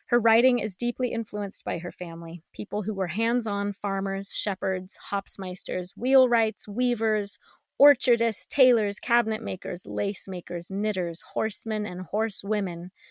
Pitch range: 190-220 Hz